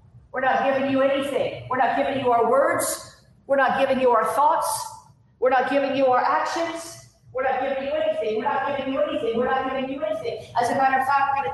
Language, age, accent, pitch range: English, 40-59, American, 245-290 Hz